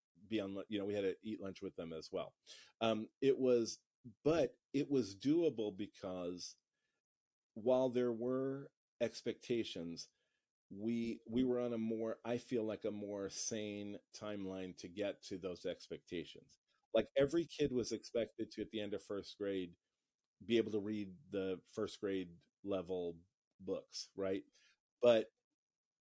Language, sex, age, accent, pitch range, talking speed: English, male, 40-59, American, 100-120 Hz, 150 wpm